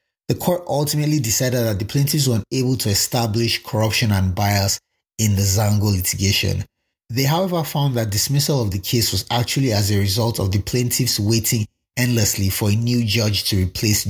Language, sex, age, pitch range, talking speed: English, male, 30-49, 100-130 Hz, 180 wpm